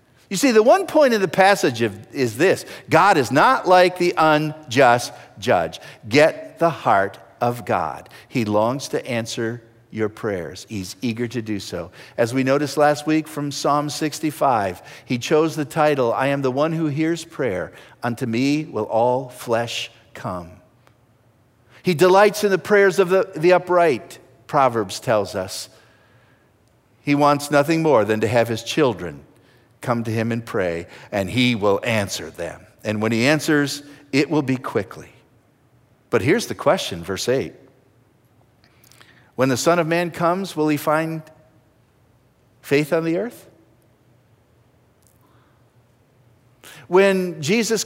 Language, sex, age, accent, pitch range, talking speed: English, male, 50-69, American, 120-170 Hz, 150 wpm